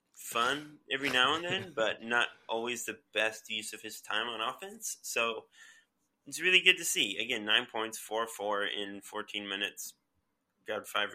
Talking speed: 165 wpm